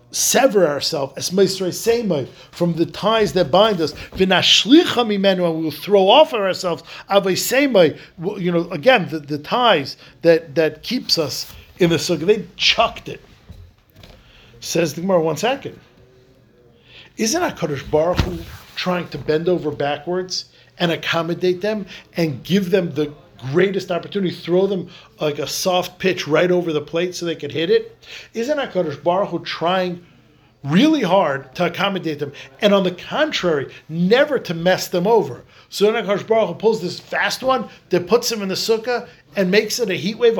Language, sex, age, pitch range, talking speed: English, male, 50-69, 155-215 Hz, 155 wpm